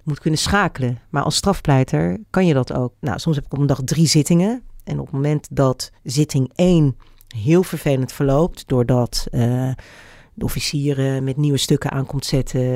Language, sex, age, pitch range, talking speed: Dutch, female, 40-59, 135-170 Hz, 180 wpm